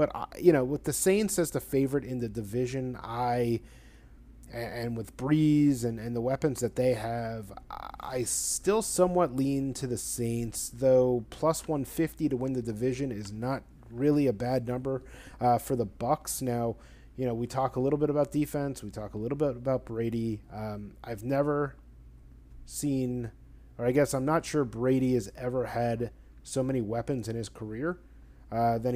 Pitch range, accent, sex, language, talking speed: 115-130 Hz, American, male, English, 180 wpm